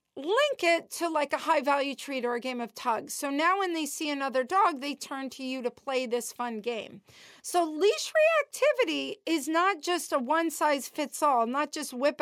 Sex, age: female, 40-59